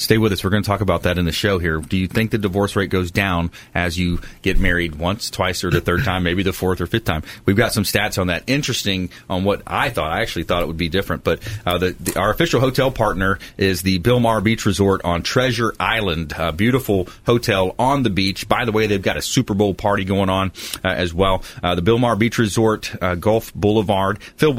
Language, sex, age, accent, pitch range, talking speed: English, male, 30-49, American, 90-115 Hz, 245 wpm